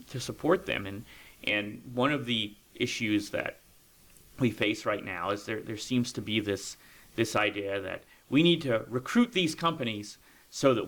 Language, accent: English, American